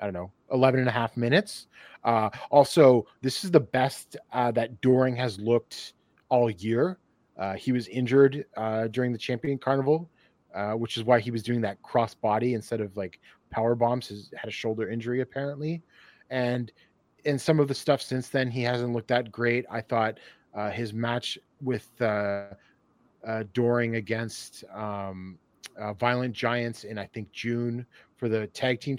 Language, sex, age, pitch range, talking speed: English, male, 30-49, 110-130 Hz, 180 wpm